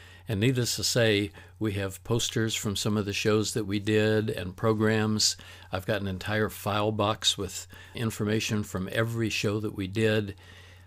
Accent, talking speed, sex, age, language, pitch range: American, 170 wpm, male, 60-79, English, 95-120 Hz